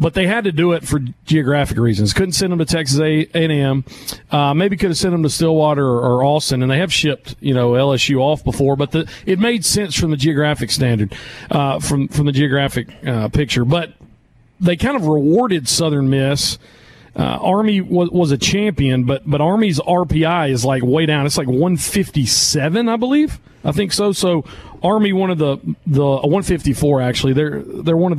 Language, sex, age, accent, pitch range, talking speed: English, male, 40-59, American, 135-180 Hz, 210 wpm